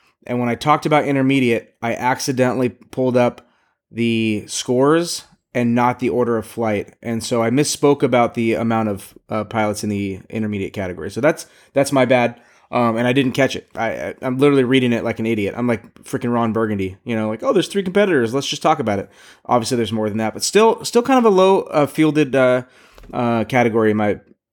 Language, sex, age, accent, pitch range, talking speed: English, male, 20-39, American, 110-140 Hz, 215 wpm